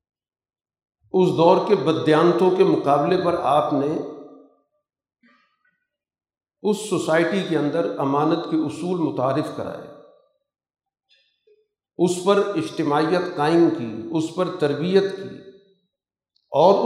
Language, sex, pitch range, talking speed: Urdu, male, 150-205 Hz, 100 wpm